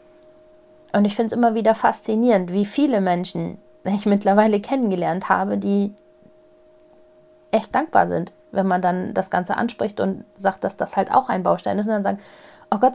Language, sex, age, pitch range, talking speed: German, female, 30-49, 185-240 Hz, 175 wpm